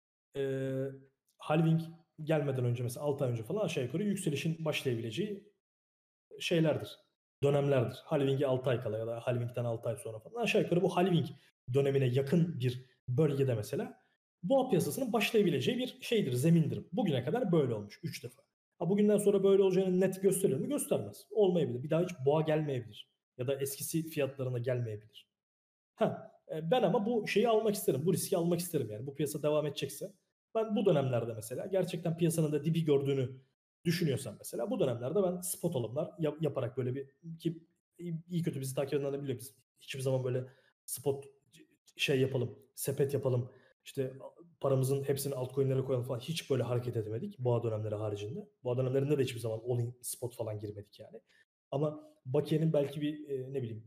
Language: Turkish